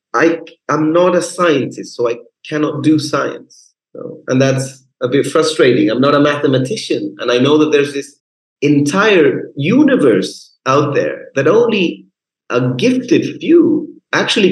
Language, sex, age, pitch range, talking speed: English, male, 30-49, 145-180 Hz, 150 wpm